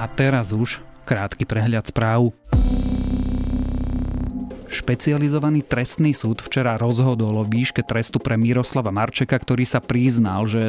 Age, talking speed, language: 30-49, 120 wpm, Slovak